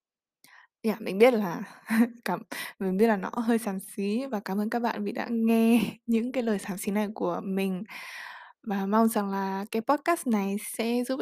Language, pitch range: Vietnamese, 205-240 Hz